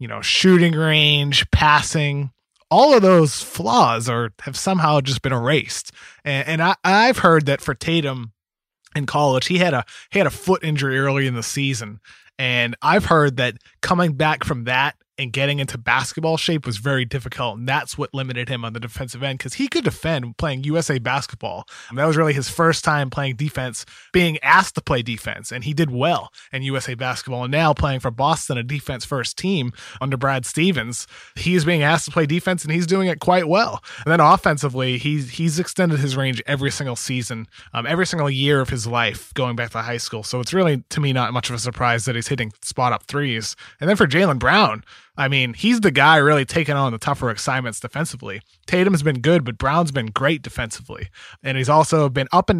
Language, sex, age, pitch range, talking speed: English, male, 20-39, 125-165 Hz, 210 wpm